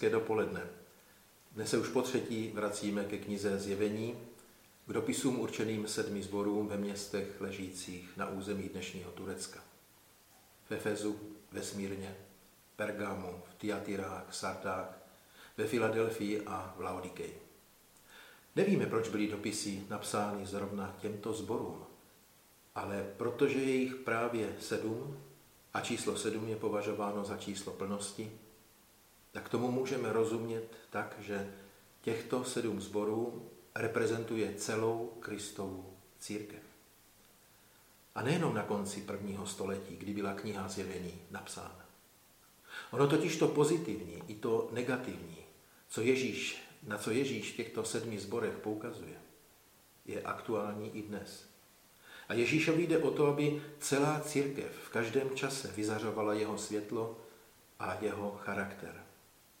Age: 40-59